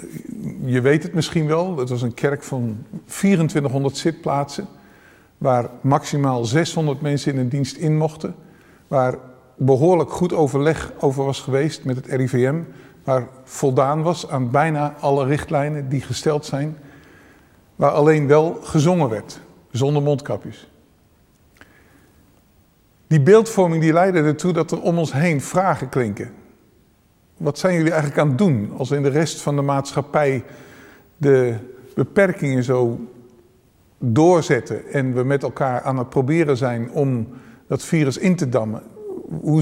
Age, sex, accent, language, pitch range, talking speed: 50-69, male, Dutch, English, 130-160 Hz, 140 wpm